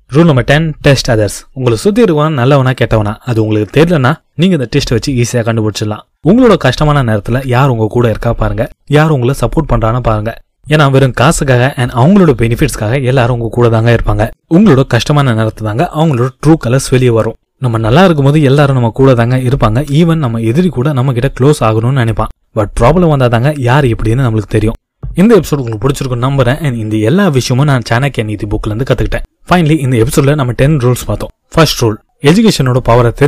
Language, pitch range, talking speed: Tamil, 115-150 Hz, 140 wpm